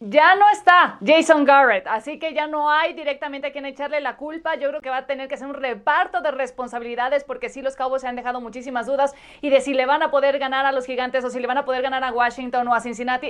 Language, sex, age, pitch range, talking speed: Spanish, female, 30-49, 250-295 Hz, 270 wpm